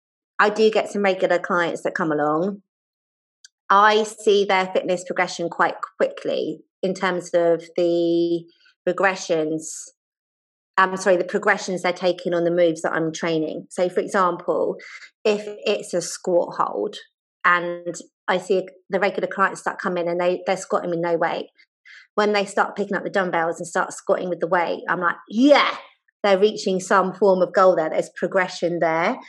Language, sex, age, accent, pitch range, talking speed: English, female, 30-49, British, 170-200 Hz, 170 wpm